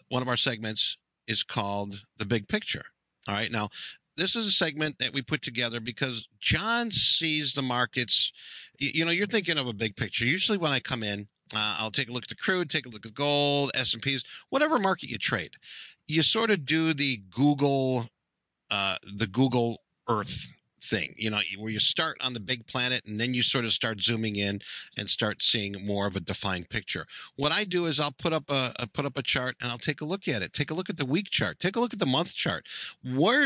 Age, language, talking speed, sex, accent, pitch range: 50-69, English, 230 wpm, male, American, 105-150 Hz